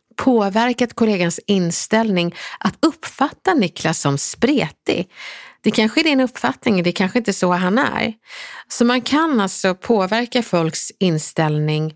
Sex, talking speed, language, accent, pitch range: female, 135 wpm, Swedish, native, 170-245 Hz